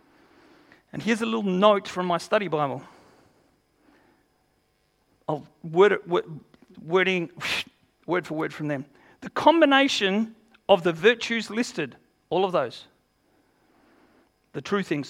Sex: male